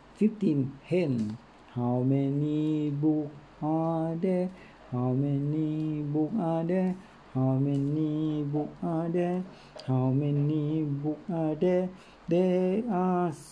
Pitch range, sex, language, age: 120-150 Hz, male, Thai, 60-79